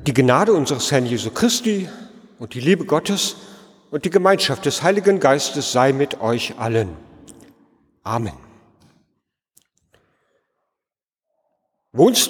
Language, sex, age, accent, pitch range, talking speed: German, male, 40-59, German, 145-195 Hz, 105 wpm